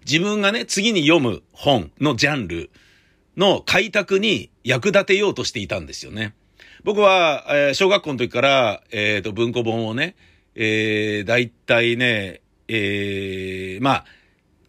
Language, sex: Japanese, male